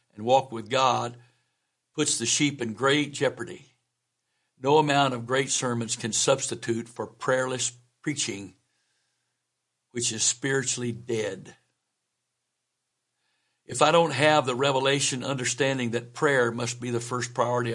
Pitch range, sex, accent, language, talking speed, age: 115-135 Hz, male, American, English, 125 wpm, 60-79